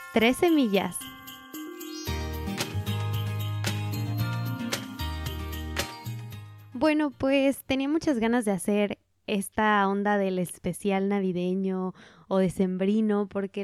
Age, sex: 20-39, female